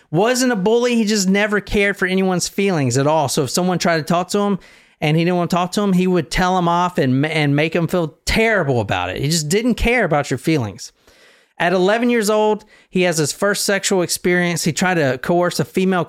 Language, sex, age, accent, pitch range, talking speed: English, male, 40-59, American, 140-190 Hz, 240 wpm